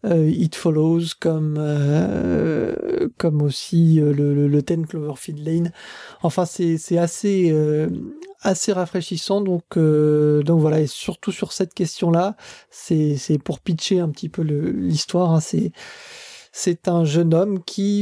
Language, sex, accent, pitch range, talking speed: French, male, French, 160-200 Hz, 155 wpm